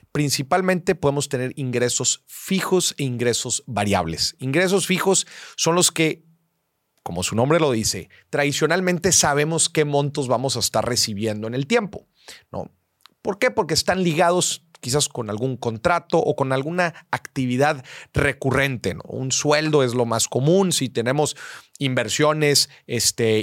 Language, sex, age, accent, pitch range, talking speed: Spanish, male, 40-59, Mexican, 120-165 Hz, 140 wpm